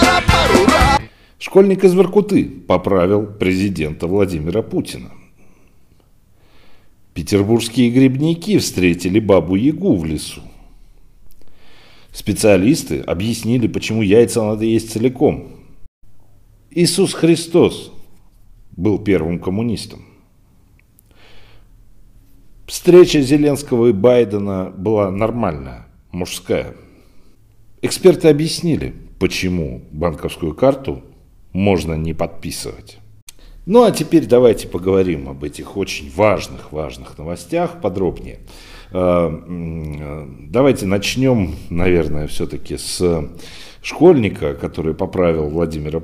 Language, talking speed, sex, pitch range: Russian, 80 wpm, male, 90-125 Hz